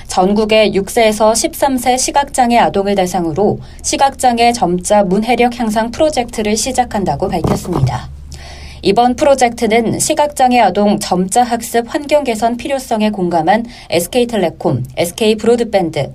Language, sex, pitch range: Korean, female, 190-250 Hz